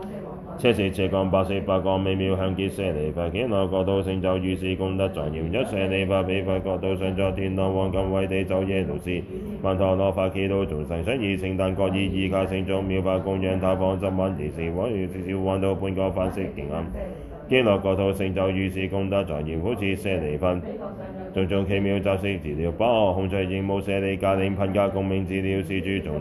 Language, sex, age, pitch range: Chinese, male, 10-29, 95-100 Hz